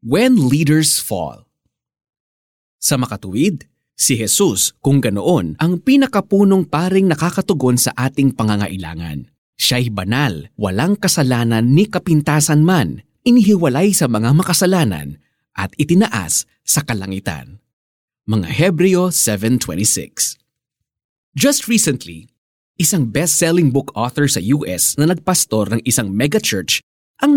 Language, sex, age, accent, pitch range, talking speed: Filipino, male, 20-39, native, 120-190 Hz, 105 wpm